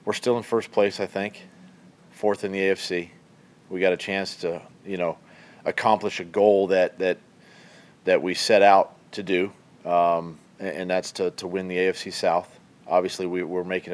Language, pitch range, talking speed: English, 90-105 Hz, 185 wpm